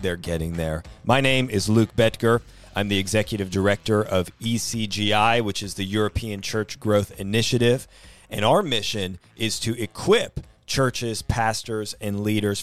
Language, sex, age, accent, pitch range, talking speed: English, male, 30-49, American, 95-115 Hz, 145 wpm